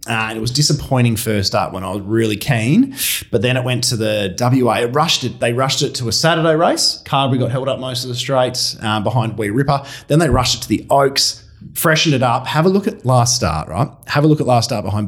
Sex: male